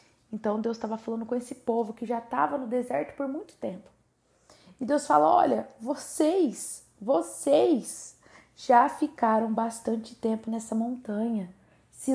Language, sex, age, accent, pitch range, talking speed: Portuguese, female, 20-39, Brazilian, 205-245 Hz, 140 wpm